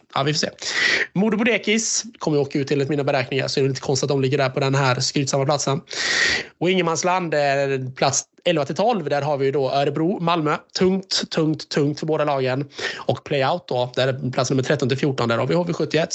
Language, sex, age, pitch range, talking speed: Swedish, male, 20-39, 140-185 Hz, 210 wpm